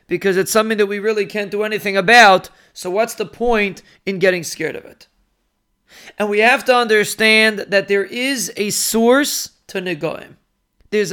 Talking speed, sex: 175 wpm, male